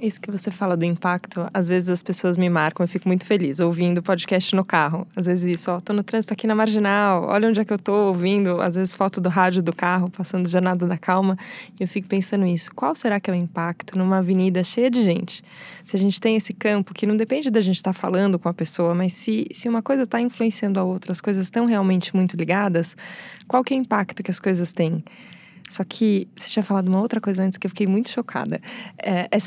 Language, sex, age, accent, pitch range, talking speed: Portuguese, female, 20-39, Brazilian, 175-205 Hz, 245 wpm